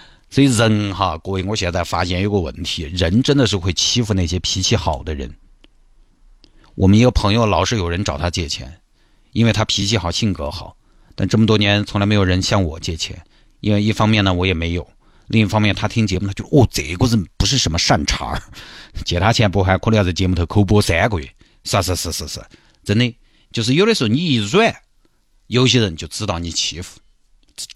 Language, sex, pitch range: Chinese, male, 90-120 Hz